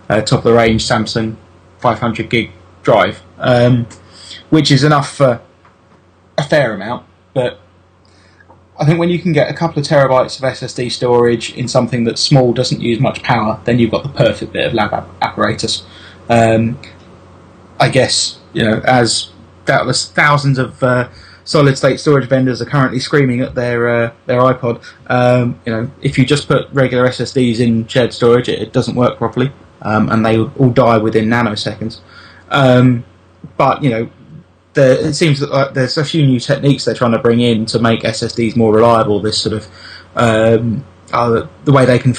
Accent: British